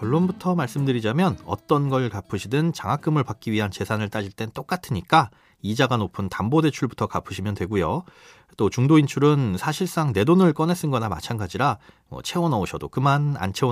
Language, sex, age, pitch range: Korean, male, 30-49, 105-160 Hz